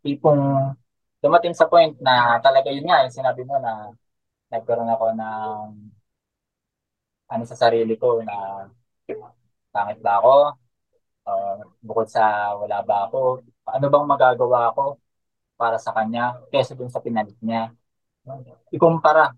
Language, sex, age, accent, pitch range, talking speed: Filipino, male, 20-39, native, 115-145 Hz, 135 wpm